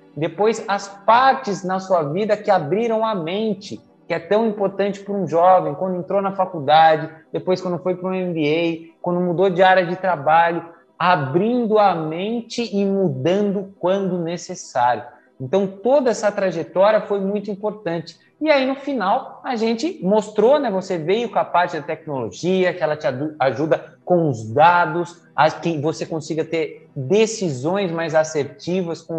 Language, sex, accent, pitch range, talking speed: Portuguese, male, Brazilian, 160-200 Hz, 160 wpm